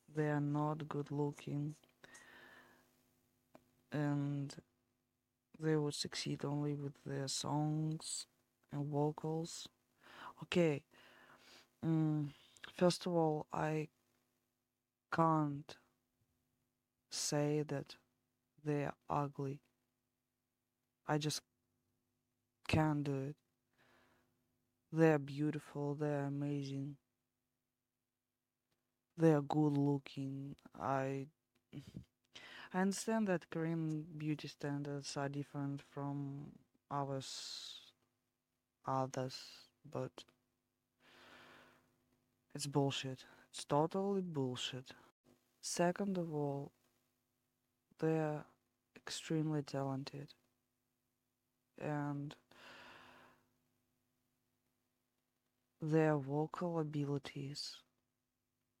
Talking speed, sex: 70 wpm, female